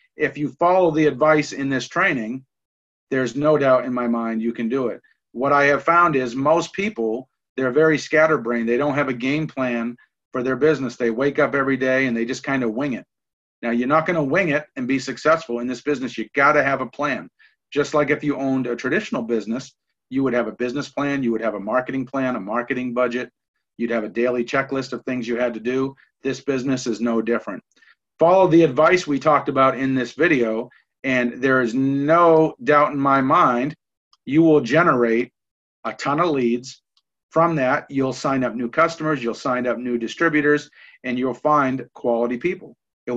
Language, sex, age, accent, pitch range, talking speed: English, male, 40-59, American, 125-150 Hz, 205 wpm